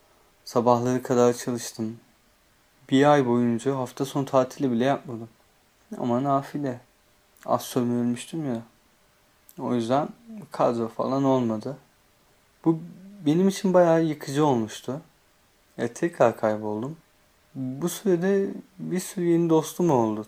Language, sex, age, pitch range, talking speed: Turkish, male, 30-49, 120-150 Hz, 105 wpm